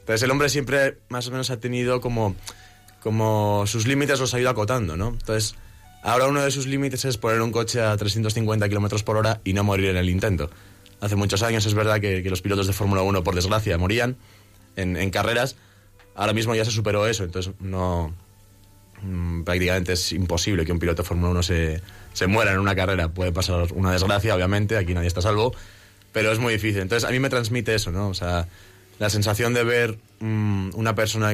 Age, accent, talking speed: 20-39, Spanish, 215 wpm